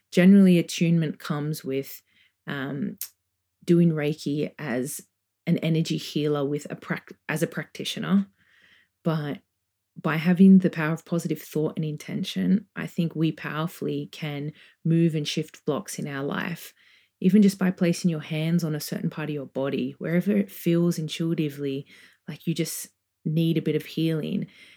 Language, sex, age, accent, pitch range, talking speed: English, female, 20-39, Australian, 150-175 Hz, 155 wpm